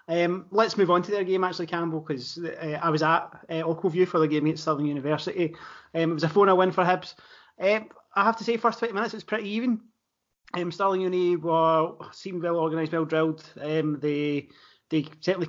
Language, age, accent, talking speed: English, 30-49, British, 215 wpm